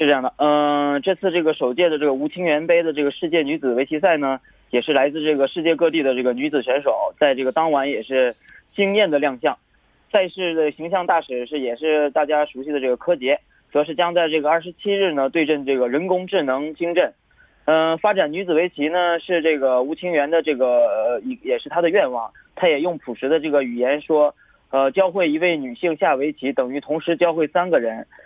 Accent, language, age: Chinese, Korean, 20-39